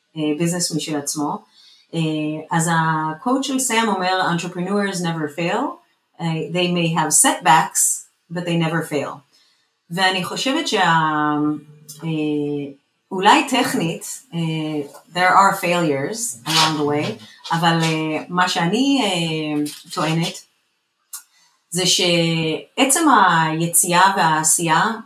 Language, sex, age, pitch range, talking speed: Hebrew, female, 30-49, 155-180 Hz, 105 wpm